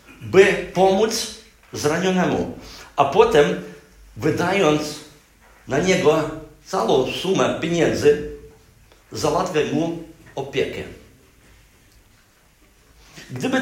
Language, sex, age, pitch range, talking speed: Polish, male, 50-69, 150-185 Hz, 65 wpm